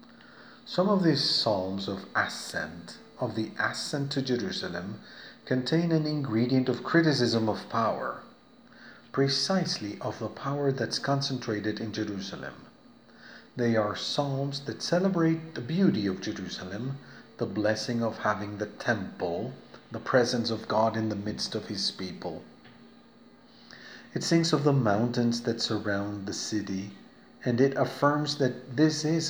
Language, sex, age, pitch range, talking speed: Spanish, male, 40-59, 105-145 Hz, 135 wpm